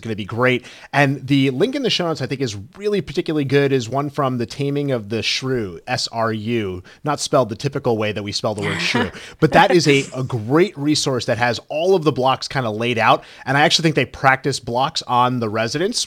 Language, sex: English, male